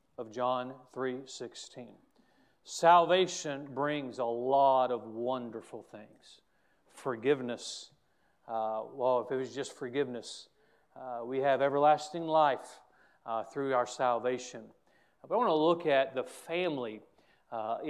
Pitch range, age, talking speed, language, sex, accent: 125-140 Hz, 40-59, 120 wpm, English, male, American